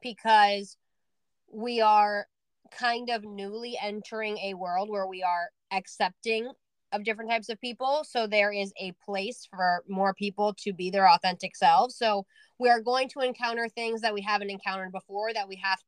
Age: 20-39